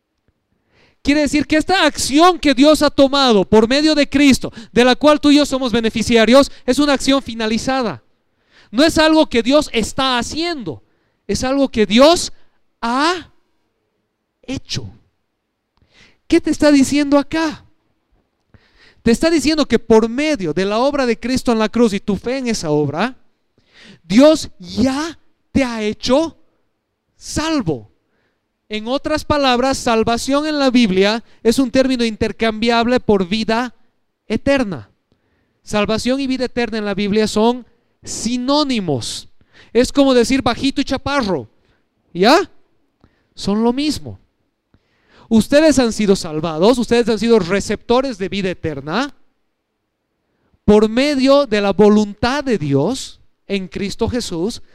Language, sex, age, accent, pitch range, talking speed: Spanish, male, 40-59, Mexican, 210-275 Hz, 135 wpm